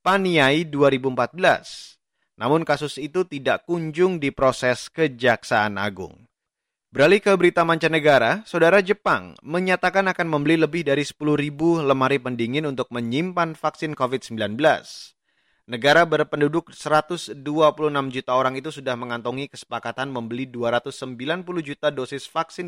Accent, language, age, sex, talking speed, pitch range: native, Indonesian, 30-49, male, 110 wpm, 130-160 Hz